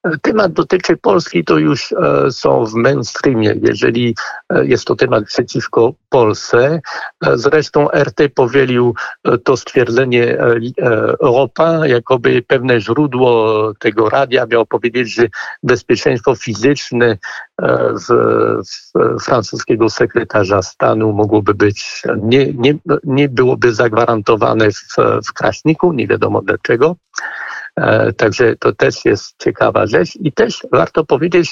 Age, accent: 60-79, native